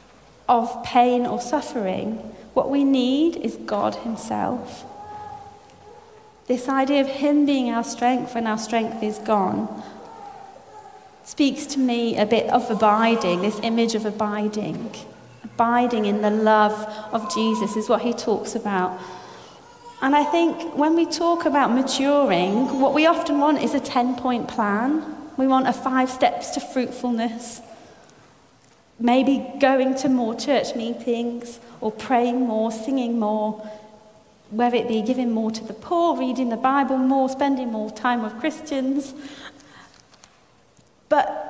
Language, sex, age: English, female, 30-49